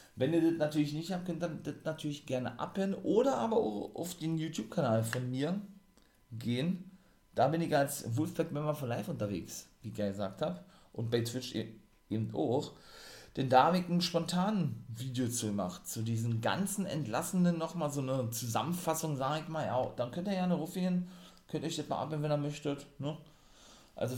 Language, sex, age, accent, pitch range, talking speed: German, male, 40-59, German, 110-160 Hz, 180 wpm